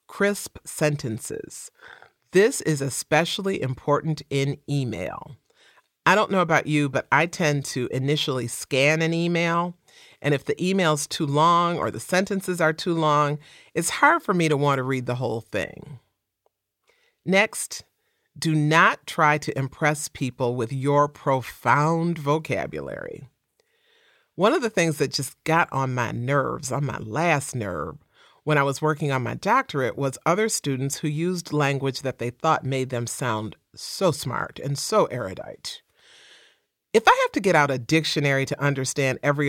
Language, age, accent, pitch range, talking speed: English, 40-59, American, 130-170 Hz, 160 wpm